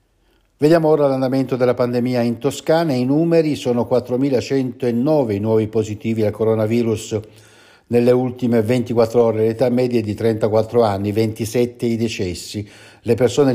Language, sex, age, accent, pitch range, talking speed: Italian, male, 60-79, native, 110-125 Hz, 135 wpm